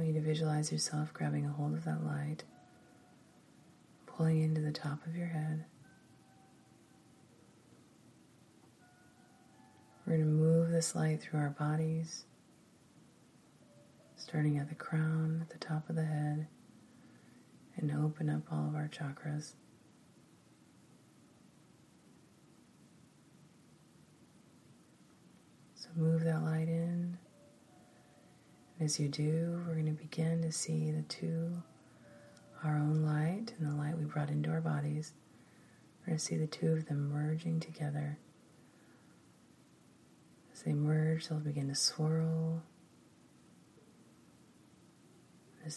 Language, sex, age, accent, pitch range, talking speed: English, female, 30-49, American, 150-165 Hz, 115 wpm